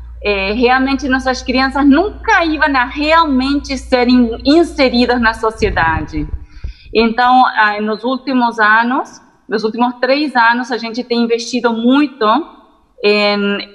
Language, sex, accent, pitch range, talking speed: Portuguese, female, Brazilian, 215-285 Hz, 105 wpm